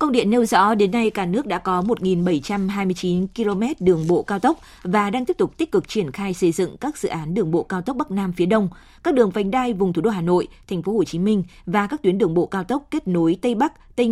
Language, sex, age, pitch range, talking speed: Vietnamese, female, 20-39, 180-230 Hz, 270 wpm